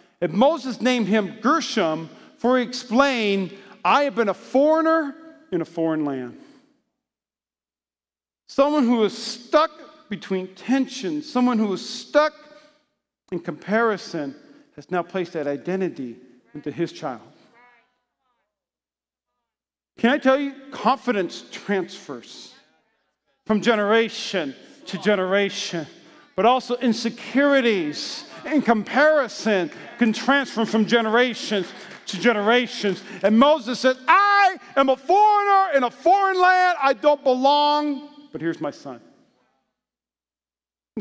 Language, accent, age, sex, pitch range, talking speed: English, American, 40-59, male, 185-275 Hz, 115 wpm